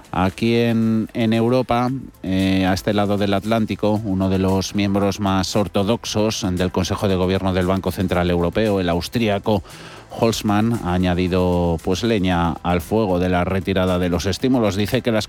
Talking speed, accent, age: 165 wpm, Spanish, 40-59